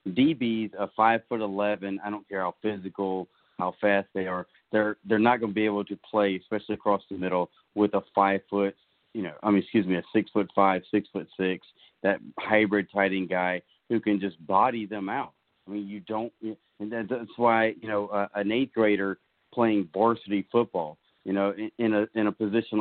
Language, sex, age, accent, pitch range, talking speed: English, male, 40-59, American, 95-110 Hz, 205 wpm